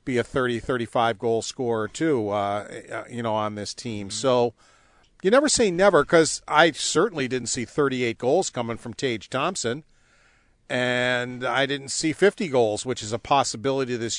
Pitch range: 115-145 Hz